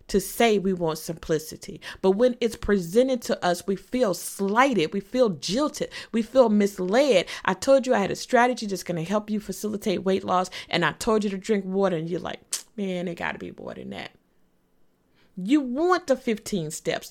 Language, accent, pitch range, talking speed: English, American, 170-215 Hz, 205 wpm